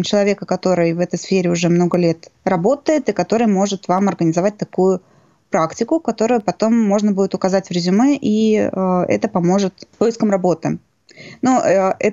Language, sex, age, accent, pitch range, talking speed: Russian, female, 20-39, native, 180-210 Hz, 155 wpm